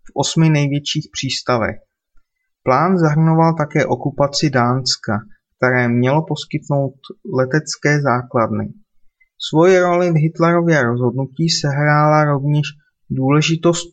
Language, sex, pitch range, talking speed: Czech, male, 135-165 Hz, 95 wpm